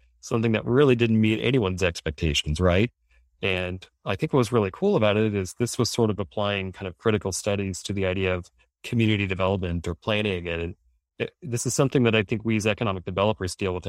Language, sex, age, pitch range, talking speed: English, male, 30-49, 90-110 Hz, 210 wpm